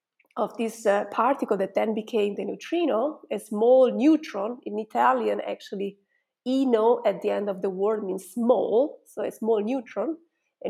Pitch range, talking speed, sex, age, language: 205-260 Hz, 165 wpm, female, 30-49, English